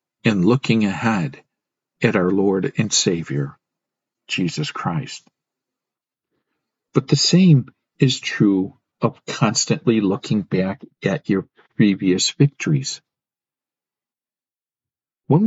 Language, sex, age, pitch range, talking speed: English, male, 50-69, 115-150 Hz, 95 wpm